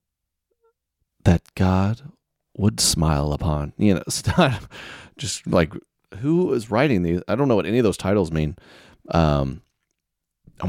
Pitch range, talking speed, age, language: 80-110 Hz, 135 wpm, 30-49, English